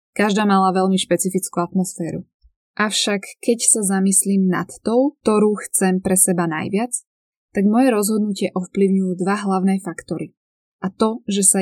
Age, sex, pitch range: 20-39, female, 180-215 Hz